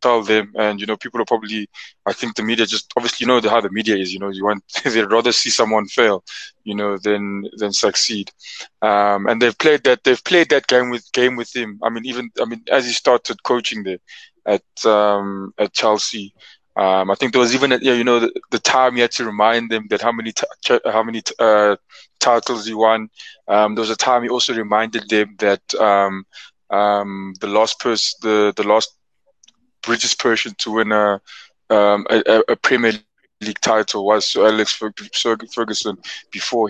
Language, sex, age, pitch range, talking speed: English, male, 20-39, 105-120 Hz, 200 wpm